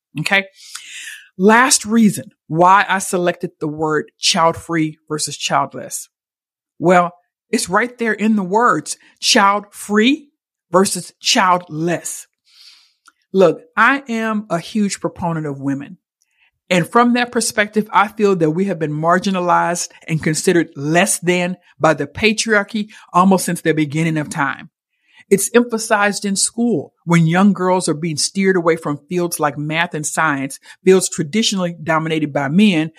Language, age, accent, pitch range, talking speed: English, 50-69, American, 170-225 Hz, 140 wpm